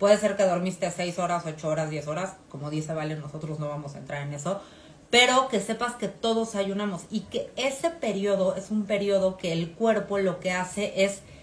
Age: 30-49